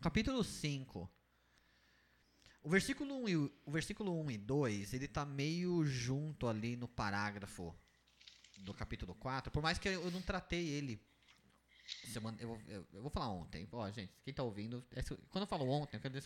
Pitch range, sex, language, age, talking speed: 100-145 Hz, male, Portuguese, 20-39, 175 wpm